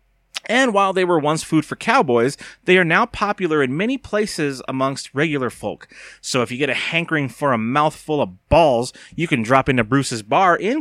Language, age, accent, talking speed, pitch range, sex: English, 30-49, American, 200 wpm, 115-165 Hz, male